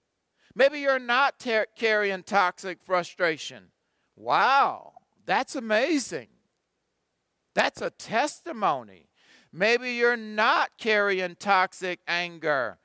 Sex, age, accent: male, 50-69, American